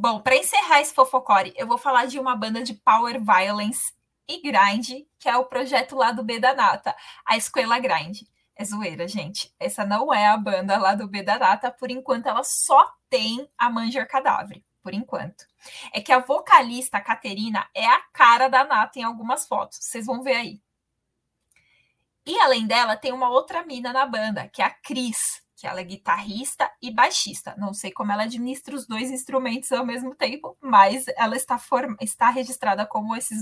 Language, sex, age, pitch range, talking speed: Portuguese, female, 20-39, 210-265 Hz, 190 wpm